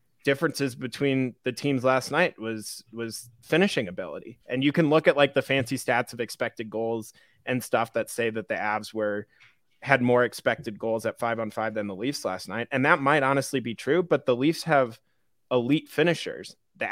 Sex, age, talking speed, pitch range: male, 20-39, 200 wpm, 115-145 Hz